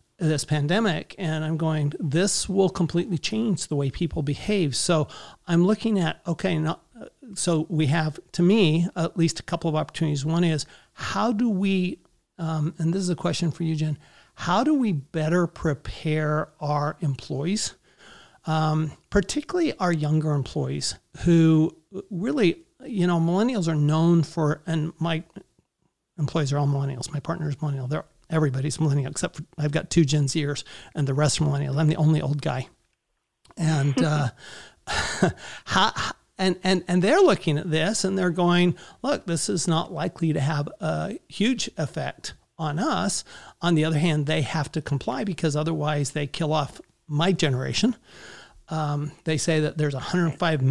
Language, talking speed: English, 160 wpm